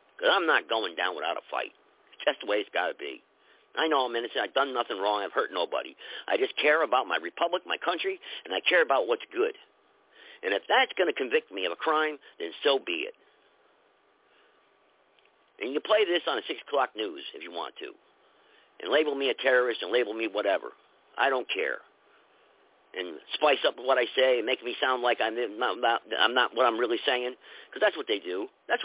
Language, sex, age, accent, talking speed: English, male, 50-69, American, 220 wpm